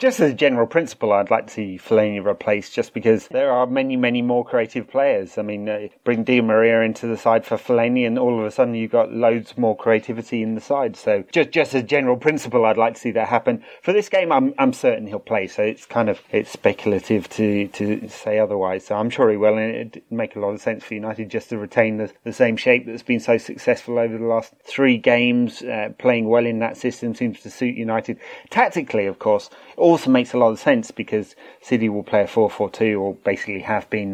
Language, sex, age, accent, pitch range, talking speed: English, male, 30-49, British, 105-130 Hz, 235 wpm